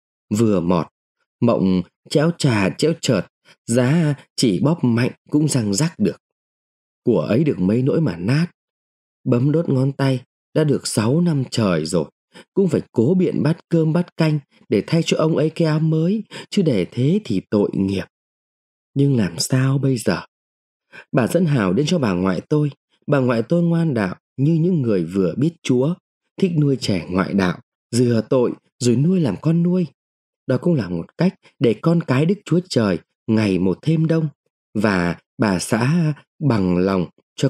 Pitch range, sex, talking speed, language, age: 105-160 Hz, male, 180 wpm, Vietnamese, 20-39